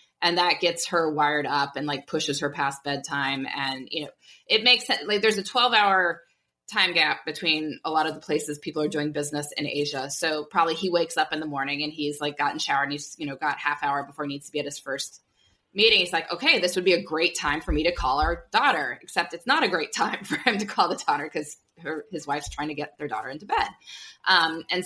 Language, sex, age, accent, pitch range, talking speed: English, female, 20-39, American, 145-180 Hz, 255 wpm